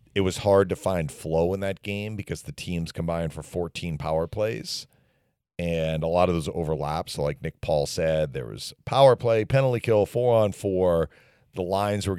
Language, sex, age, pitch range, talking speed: English, male, 40-59, 80-120 Hz, 195 wpm